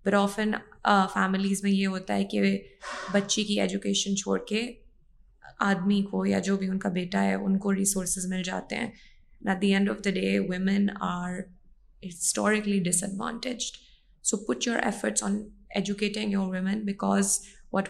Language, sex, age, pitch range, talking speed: Urdu, female, 20-39, 190-225 Hz, 170 wpm